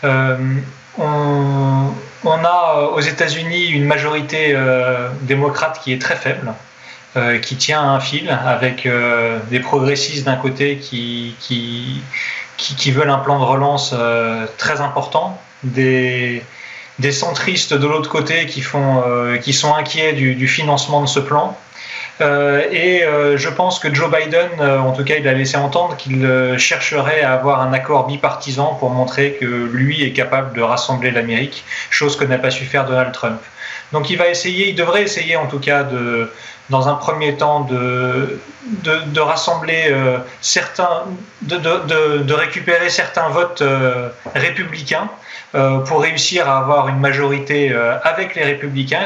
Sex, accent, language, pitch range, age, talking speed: male, French, French, 130-155 Hz, 20-39, 155 wpm